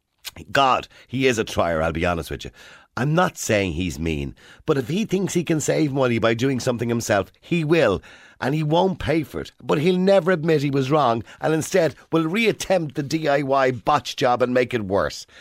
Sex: male